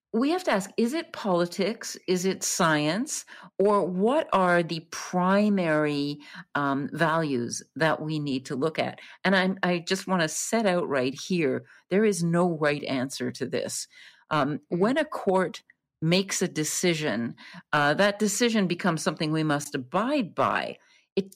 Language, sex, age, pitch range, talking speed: English, female, 50-69, 145-195 Hz, 160 wpm